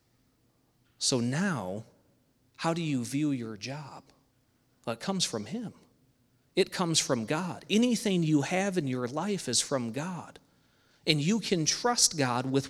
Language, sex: English, male